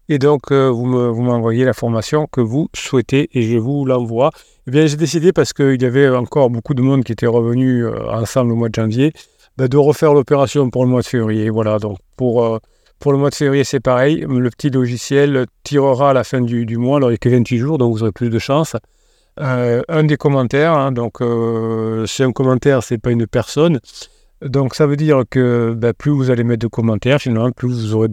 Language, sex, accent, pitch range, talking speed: French, male, French, 115-140 Hz, 235 wpm